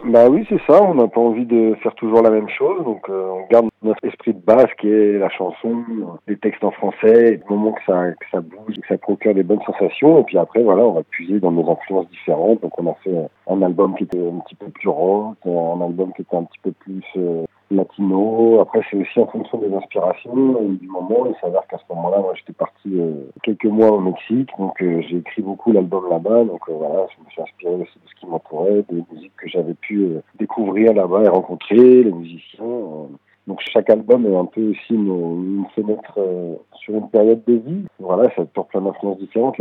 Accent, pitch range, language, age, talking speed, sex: French, 90-110 Hz, French, 40-59, 235 wpm, male